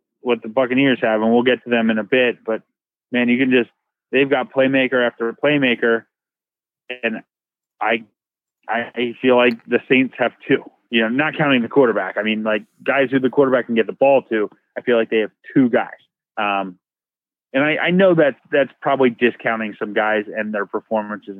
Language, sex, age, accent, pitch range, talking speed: English, male, 20-39, American, 110-130 Hz, 195 wpm